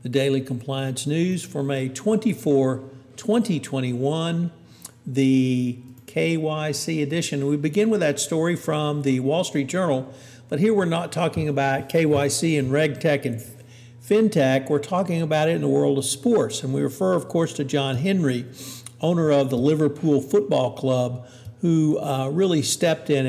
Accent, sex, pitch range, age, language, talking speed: American, male, 130-155 Hz, 50-69, English, 155 wpm